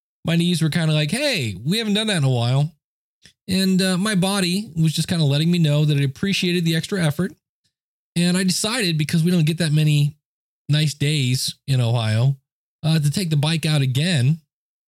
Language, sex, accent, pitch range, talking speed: English, male, American, 135-175 Hz, 205 wpm